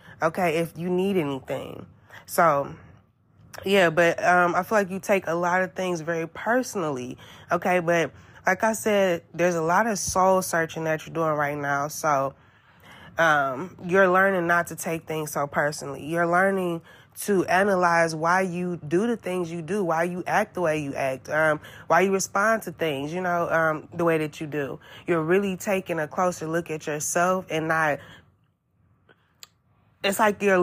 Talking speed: 180 wpm